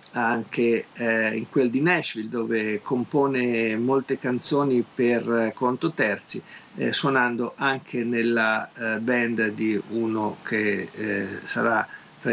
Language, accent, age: Italian, native, 50-69